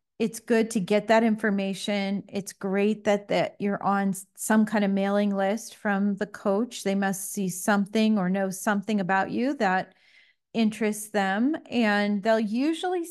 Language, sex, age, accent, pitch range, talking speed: English, female, 40-59, American, 195-240 Hz, 160 wpm